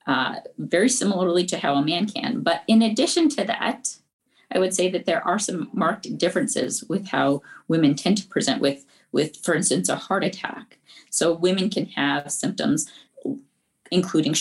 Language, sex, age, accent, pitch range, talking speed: English, female, 40-59, American, 140-220 Hz, 170 wpm